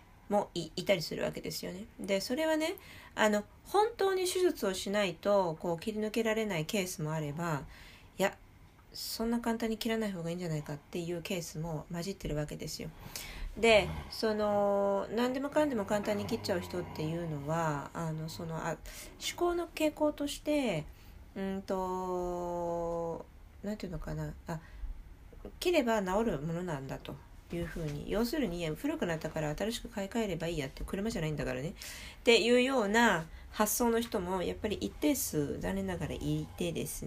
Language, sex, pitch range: Japanese, female, 155-225 Hz